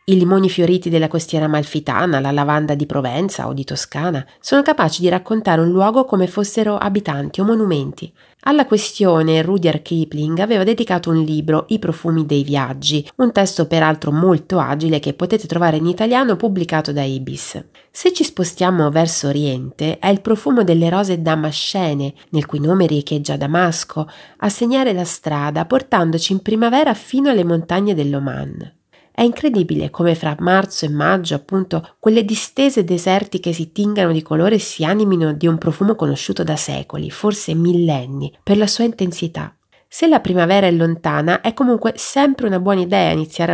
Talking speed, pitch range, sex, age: 165 wpm, 155-205 Hz, female, 30-49